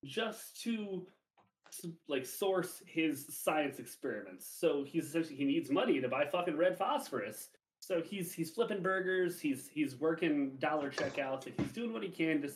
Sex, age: male, 30-49